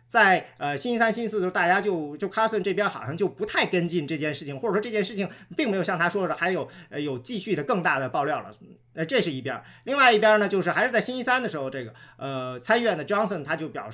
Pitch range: 125-180 Hz